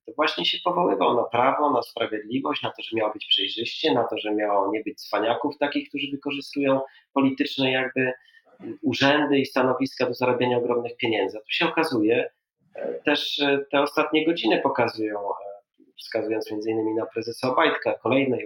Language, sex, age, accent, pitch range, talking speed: Polish, male, 30-49, native, 130-175 Hz, 160 wpm